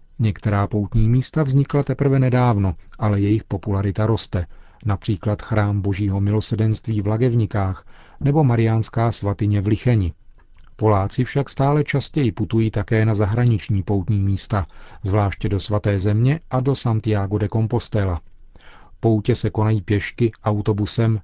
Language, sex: Czech, male